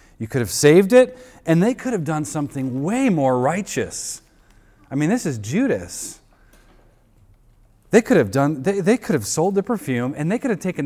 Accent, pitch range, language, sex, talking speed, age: American, 115-165 Hz, English, male, 195 wpm, 30-49